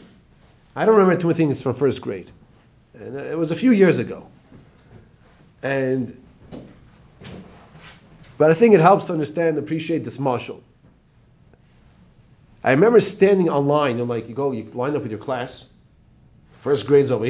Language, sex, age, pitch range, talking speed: English, male, 40-59, 130-170 Hz, 155 wpm